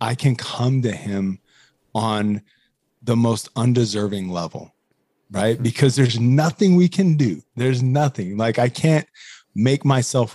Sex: male